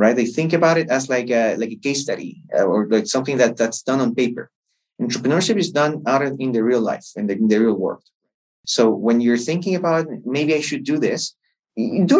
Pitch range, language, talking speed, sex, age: 125-195 Hz, English, 225 wpm, male, 30-49